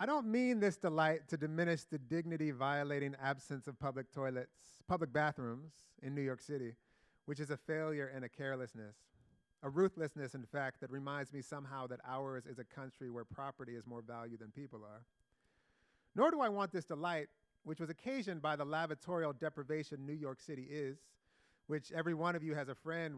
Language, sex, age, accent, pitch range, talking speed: English, male, 30-49, American, 125-165 Hz, 190 wpm